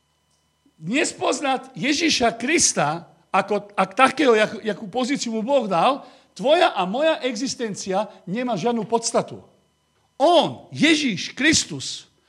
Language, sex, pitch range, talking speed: Slovak, male, 190-265 Hz, 105 wpm